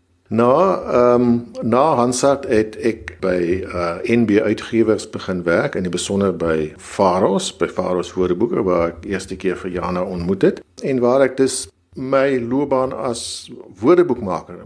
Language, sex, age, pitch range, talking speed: English, male, 50-69, 90-120 Hz, 145 wpm